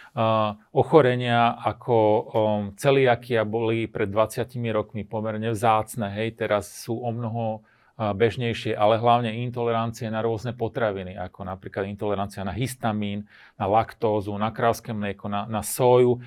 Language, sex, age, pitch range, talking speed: Slovak, male, 40-59, 110-130 Hz, 135 wpm